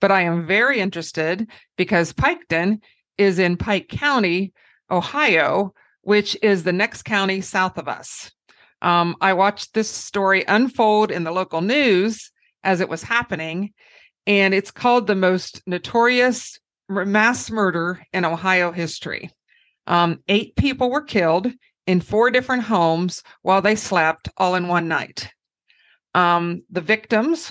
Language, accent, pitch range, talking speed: English, American, 175-215 Hz, 140 wpm